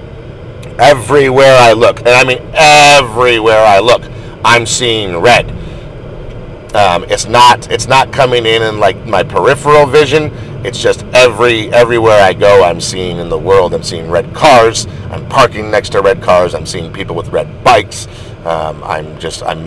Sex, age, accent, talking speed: male, 40-59, American, 170 wpm